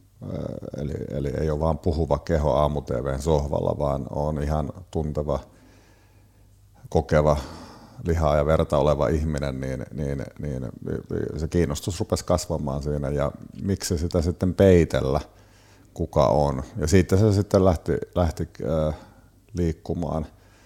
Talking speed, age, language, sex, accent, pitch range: 120 wpm, 50-69, Finnish, male, native, 75-90 Hz